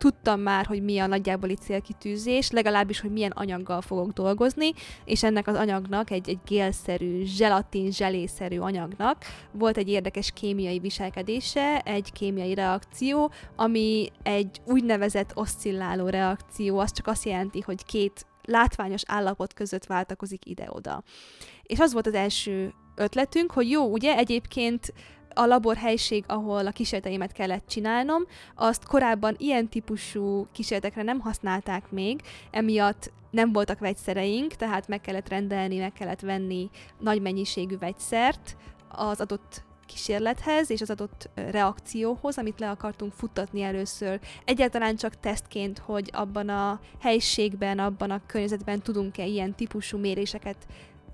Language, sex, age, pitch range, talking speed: Hungarian, female, 20-39, 195-225 Hz, 130 wpm